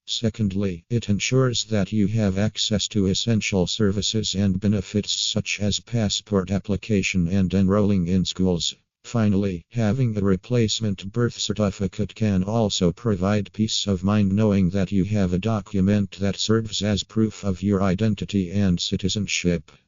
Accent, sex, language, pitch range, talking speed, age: American, male, English, 95-110 Hz, 140 wpm, 50-69